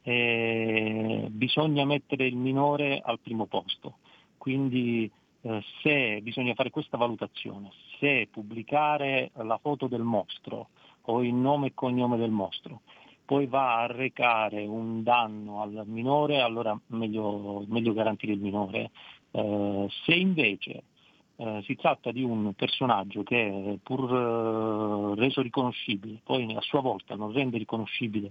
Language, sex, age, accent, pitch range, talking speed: Italian, male, 50-69, native, 105-130 Hz, 135 wpm